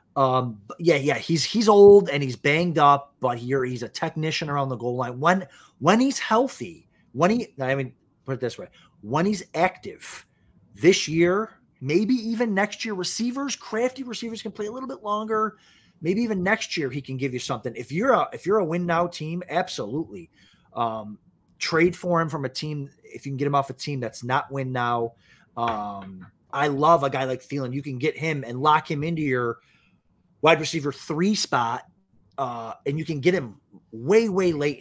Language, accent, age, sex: English, American, 30-49, male